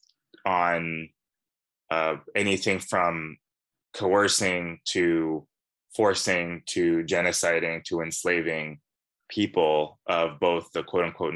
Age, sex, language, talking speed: 20-39, male, English, 85 wpm